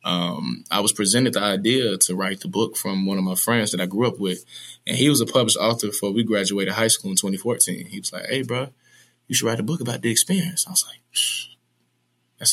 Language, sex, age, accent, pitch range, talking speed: English, male, 20-39, American, 100-125 Hz, 240 wpm